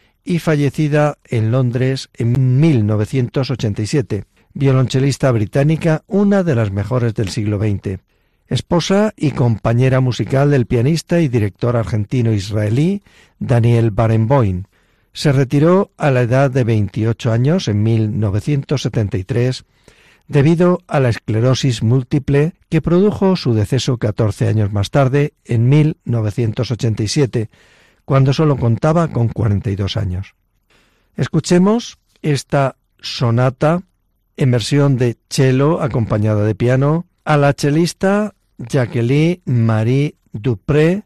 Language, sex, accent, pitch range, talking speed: Spanish, male, Spanish, 110-150 Hz, 105 wpm